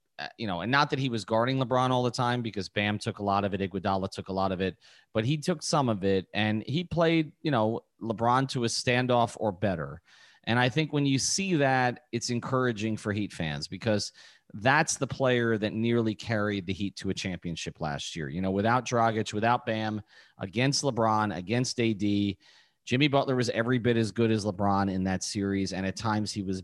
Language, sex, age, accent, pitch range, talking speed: English, male, 30-49, American, 100-130 Hz, 215 wpm